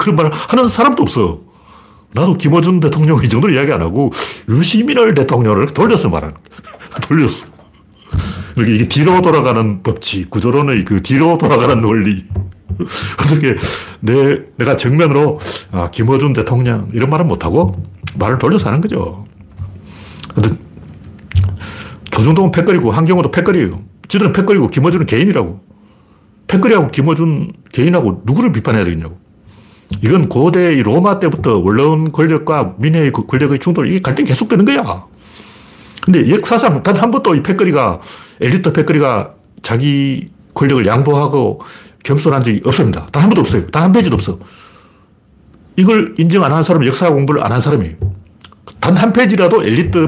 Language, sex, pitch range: Korean, male, 105-165 Hz